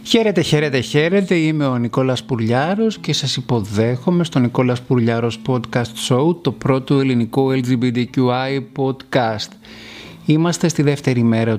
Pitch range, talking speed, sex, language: 110-170 Hz, 125 wpm, male, Greek